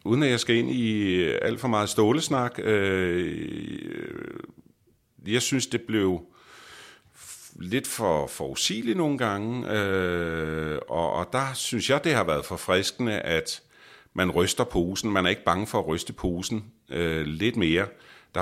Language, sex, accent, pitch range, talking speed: Danish, male, native, 85-110 Hz, 145 wpm